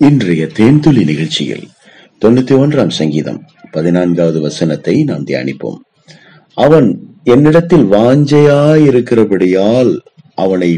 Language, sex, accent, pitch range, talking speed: Tamil, male, native, 90-150 Hz, 80 wpm